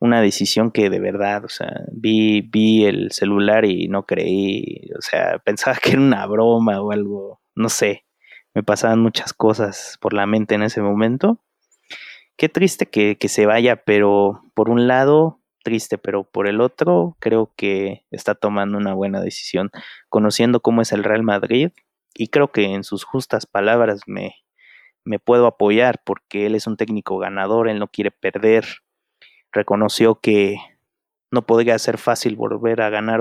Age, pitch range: 30-49, 105-115 Hz